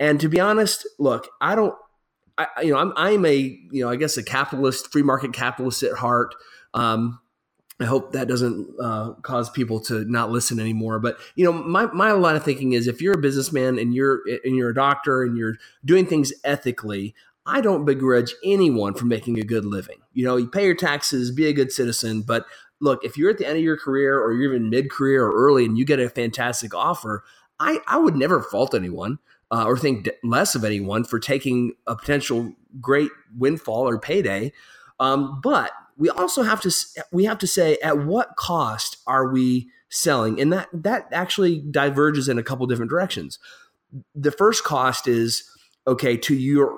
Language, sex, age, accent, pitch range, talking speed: English, male, 30-49, American, 120-150 Hz, 200 wpm